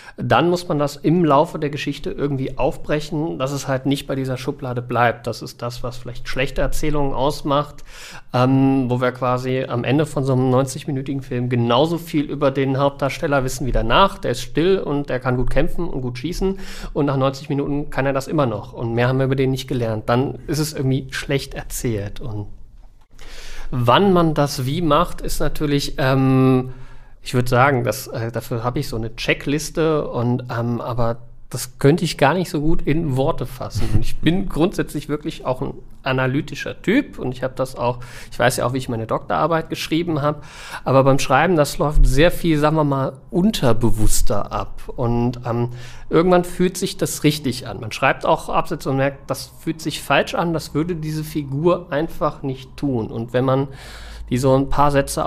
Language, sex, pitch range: German, male, 125-155 Hz